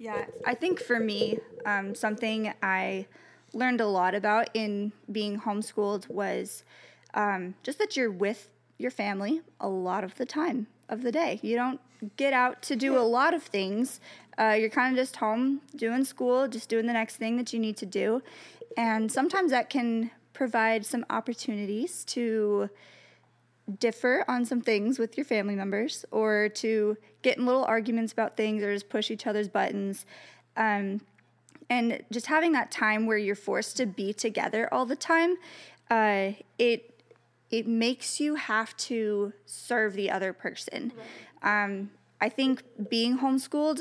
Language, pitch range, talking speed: English, 210-255 Hz, 165 wpm